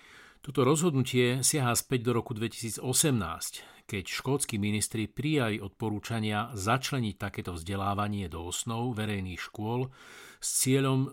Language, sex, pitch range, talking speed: Slovak, male, 100-130 Hz, 115 wpm